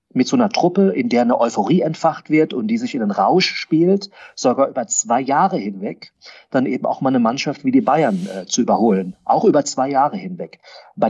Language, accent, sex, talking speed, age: German, German, male, 215 wpm, 40-59